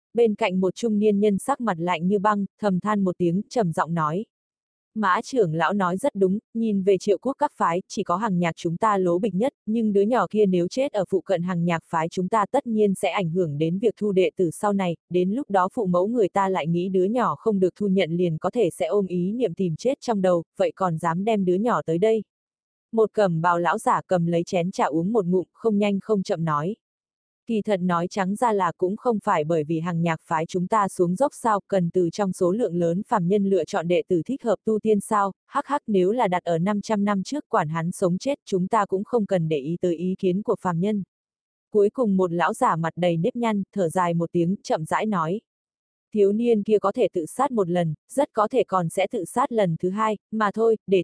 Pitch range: 180-215 Hz